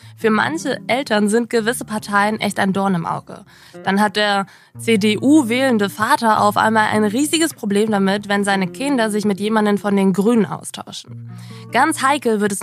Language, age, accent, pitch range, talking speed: German, 20-39, German, 185-225 Hz, 170 wpm